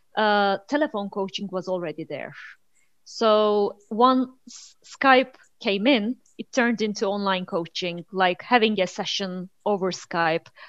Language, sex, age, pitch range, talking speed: Turkish, female, 30-49, 185-235 Hz, 125 wpm